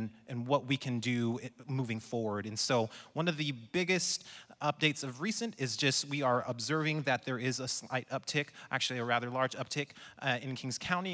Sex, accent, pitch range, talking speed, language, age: male, American, 120-150 Hz, 195 wpm, English, 30-49